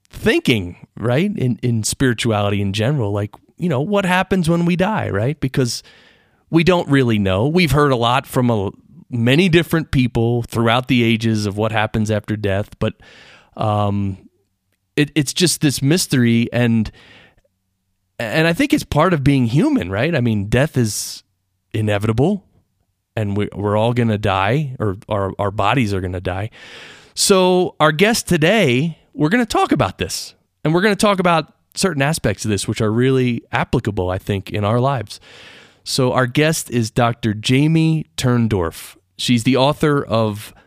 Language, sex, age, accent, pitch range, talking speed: English, male, 30-49, American, 105-150 Hz, 165 wpm